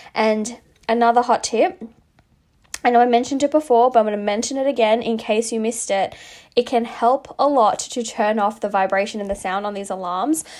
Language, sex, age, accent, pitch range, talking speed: English, female, 10-29, Australian, 210-255 Hz, 215 wpm